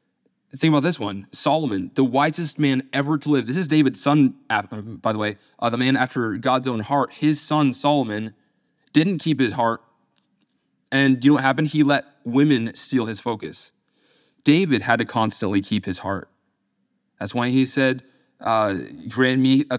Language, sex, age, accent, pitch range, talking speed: English, male, 30-49, American, 115-150 Hz, 180 wpm